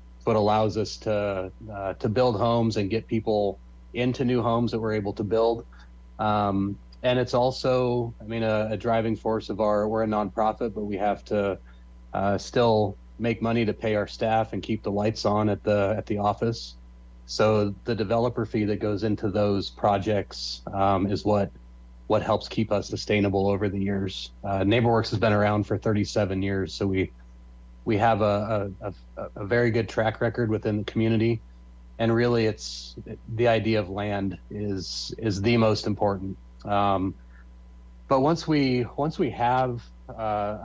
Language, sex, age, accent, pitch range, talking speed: English, male, 30-49, American, 95-115 Hz, 175 wpm